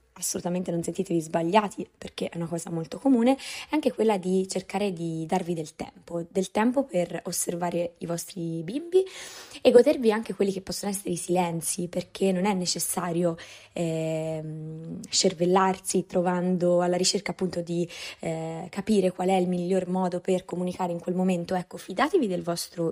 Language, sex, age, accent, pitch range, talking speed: Italian, female, 20-39, native, 170-200 Hz, 160 wpm